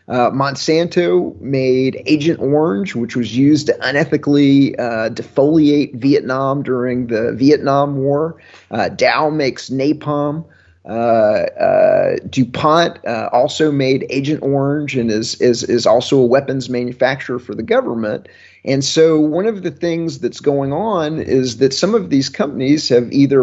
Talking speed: 145 wpm